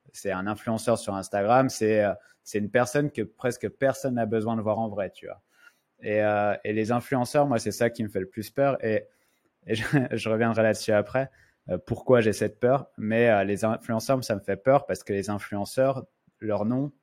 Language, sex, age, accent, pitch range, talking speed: French, male, 20-39, French, 105-125 Hz, 215 wpm